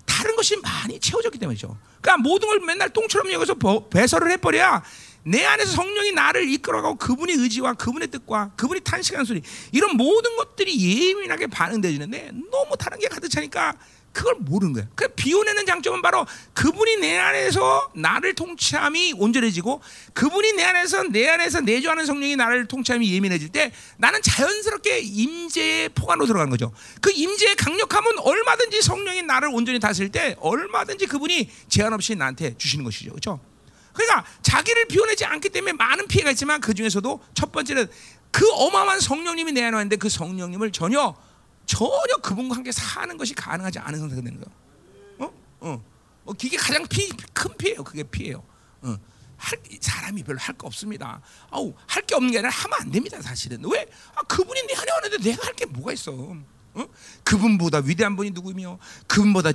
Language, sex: Korean, male